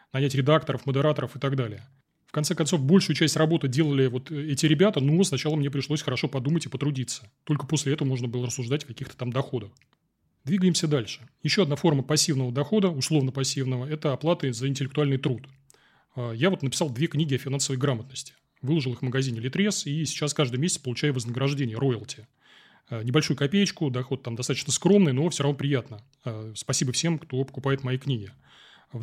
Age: 20-39